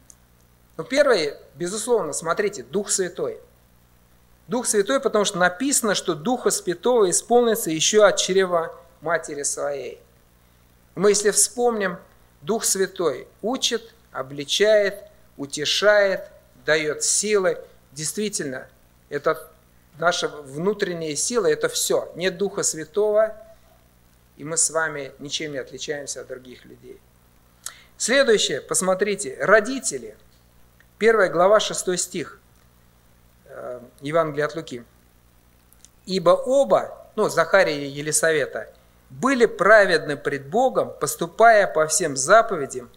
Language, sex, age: Russian, male, 50-69